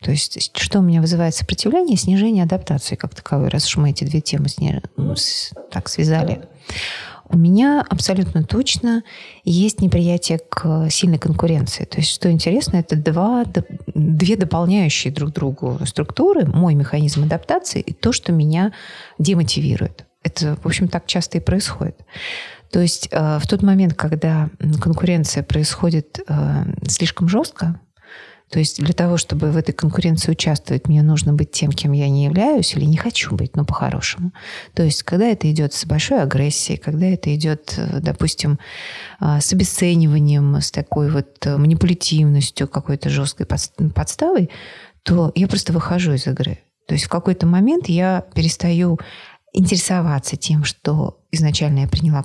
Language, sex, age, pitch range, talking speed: English, female, 30-49, 150-180 Hz, 150 wpm